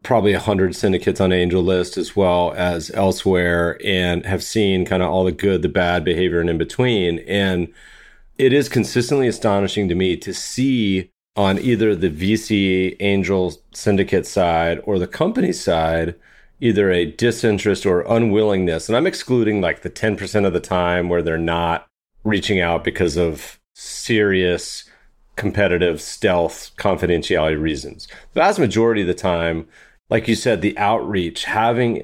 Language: English